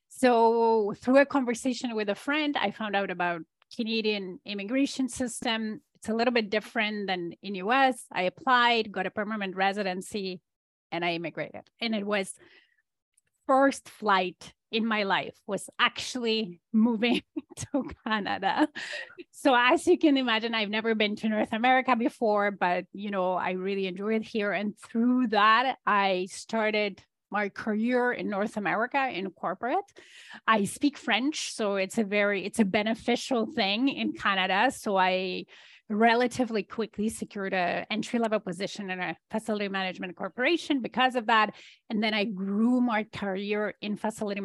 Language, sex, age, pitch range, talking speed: English, female, 30-49, 200-245 Hz, 155 wpm